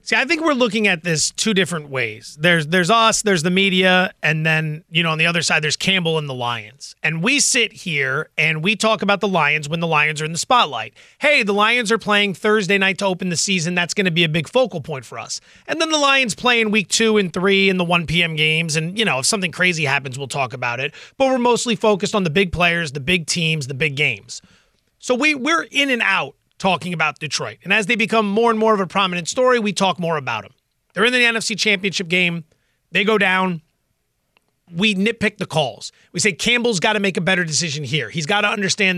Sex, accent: male, American